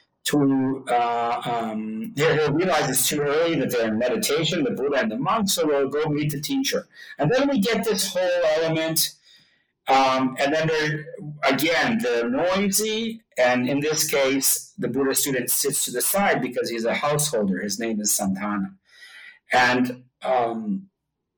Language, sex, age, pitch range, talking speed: English, male, 40-59, 125-170 Hz, 160 wpm